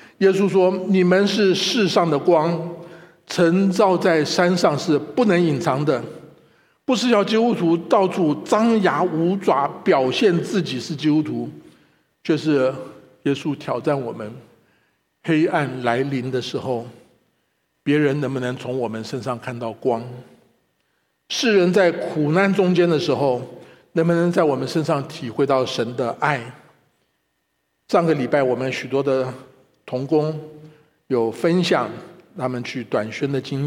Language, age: Chinese, 50-69